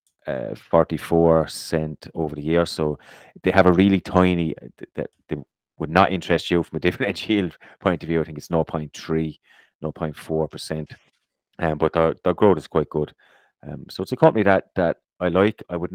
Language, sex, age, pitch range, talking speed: English, male, 30-49, 75-85 Hz, 190 wpm